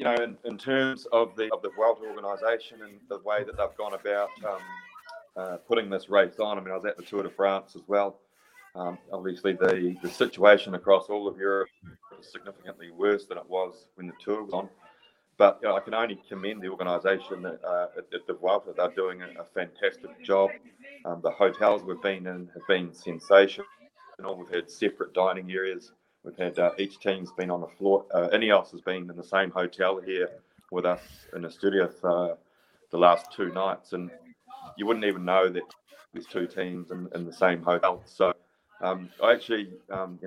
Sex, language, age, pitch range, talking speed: male, English, 30-49, 90-105 Hz, 210 wpm